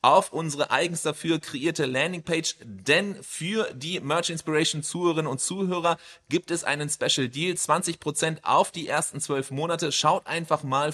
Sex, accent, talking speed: male, German, 155 wpm